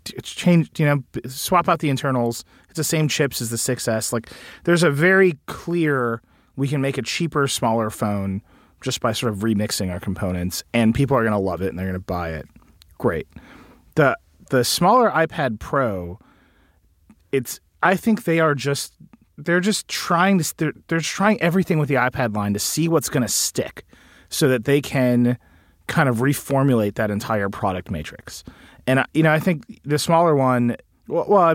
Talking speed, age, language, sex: 190 wpm, 30-49, English, male